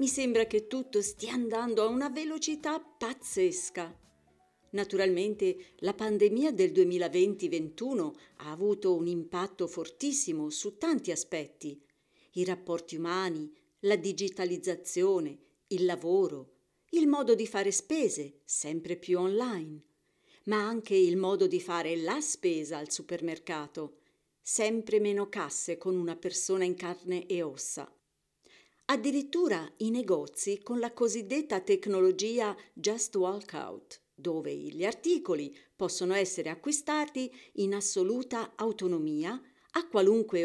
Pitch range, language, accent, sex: 175-270 Hz, Italian, native, female